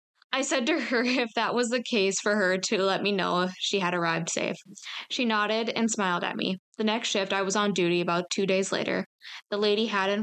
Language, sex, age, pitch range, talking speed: English, female, 10-29, 175-215 Hz, 235 wpm